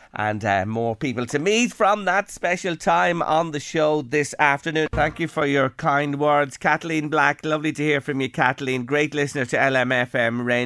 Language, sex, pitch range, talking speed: English, male, 125-165 Hz, 185 wpm